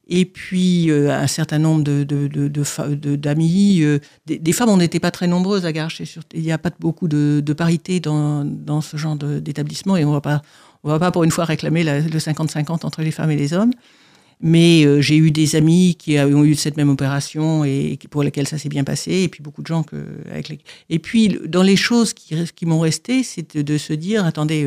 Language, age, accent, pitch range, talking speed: French, 60-79, French, 150-180 Hz, 240 wpm